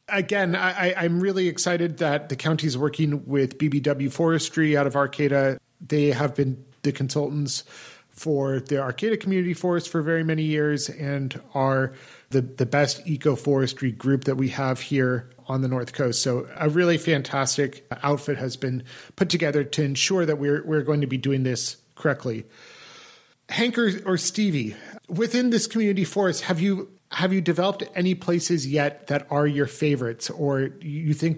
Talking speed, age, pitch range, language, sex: 165 wpm, 40-59, 135-170 Hz, English, male